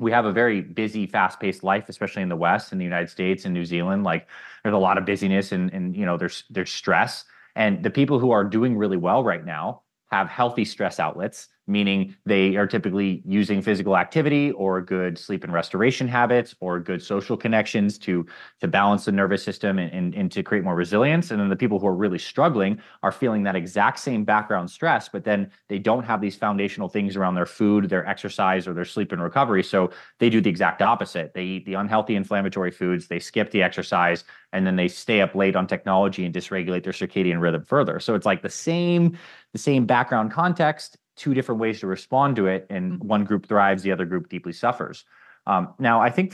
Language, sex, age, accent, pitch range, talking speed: English, male, 30-49, American, 95-110 Hz, 215 wpm